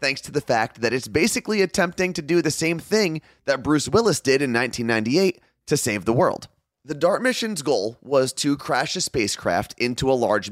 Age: 30-49